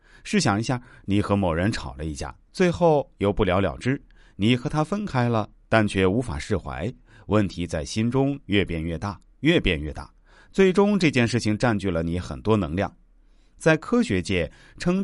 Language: Chinese